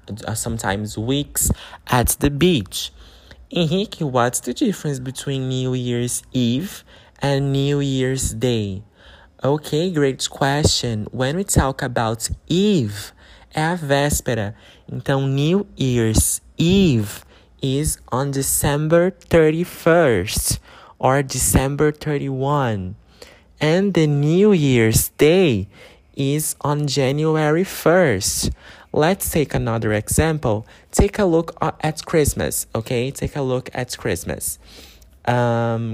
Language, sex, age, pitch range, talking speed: English, male, 20-39, 110-150 Hz, 105 wpm